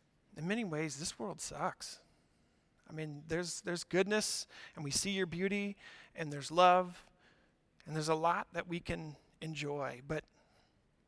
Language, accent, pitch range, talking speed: English, American, 150-180 Hz, 150 wpm